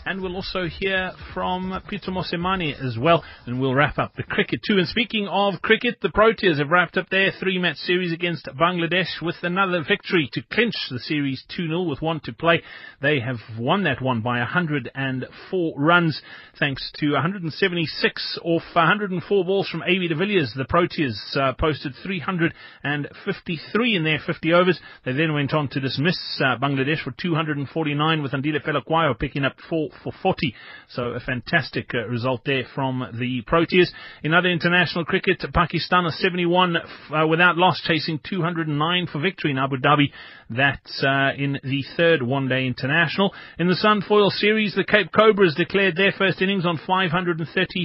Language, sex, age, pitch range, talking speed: English, male, 30-49, 140-185 Hz, 165 wpm